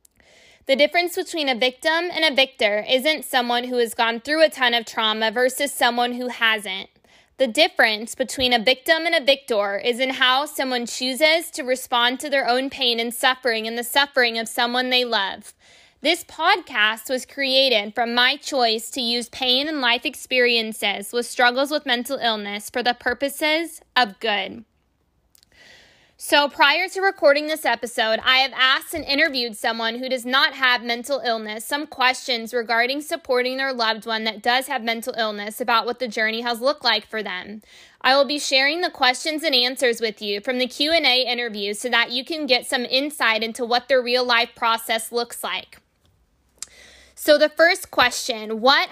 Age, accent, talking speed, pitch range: 20-39, American, 180 wpm, 235-275 Hz